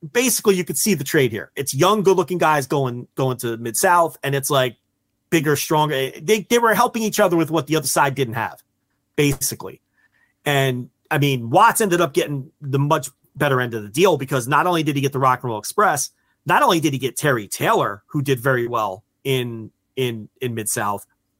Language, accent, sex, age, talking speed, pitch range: English, American, male, 30-49, 210 wpm, 125-165 Hz